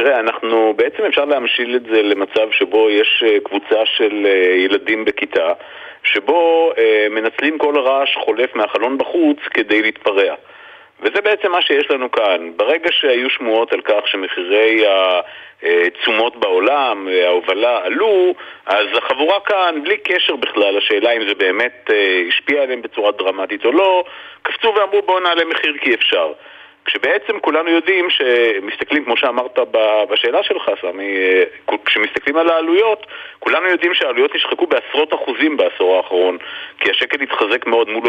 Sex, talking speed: male, 135 wpm